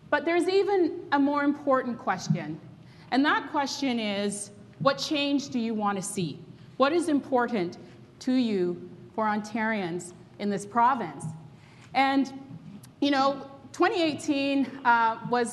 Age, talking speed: 30-49, 130 wpm